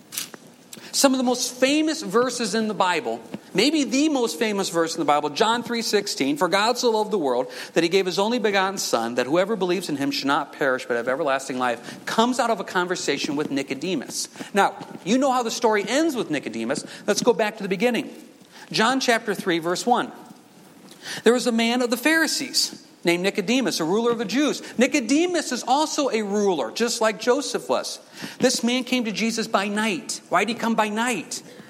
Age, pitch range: 50-69, 195-260 Hz